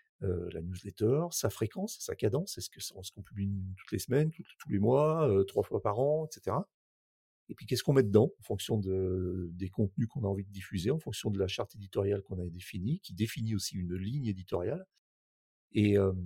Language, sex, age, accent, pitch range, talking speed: French, male, 40-59, French, 95-115 Hz, 210 wpm